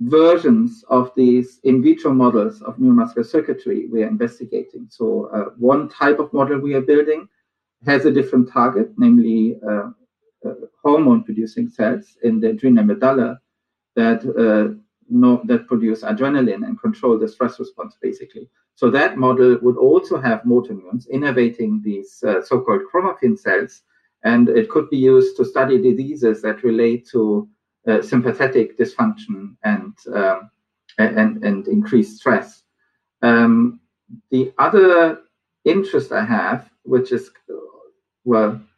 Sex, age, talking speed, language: male, 50-69, 140 wpm, English